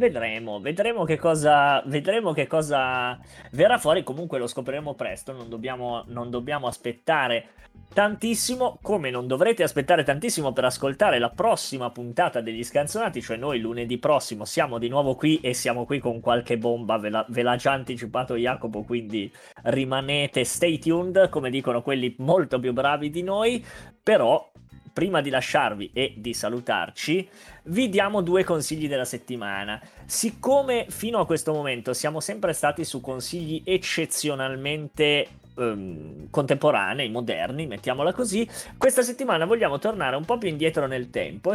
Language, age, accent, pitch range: Italian, 20-39, native, 125-175 Hz